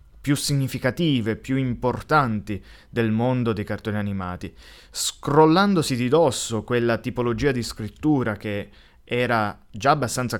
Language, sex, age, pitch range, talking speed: Italian, male, 20-39, 105-130 Hz, 115 wpm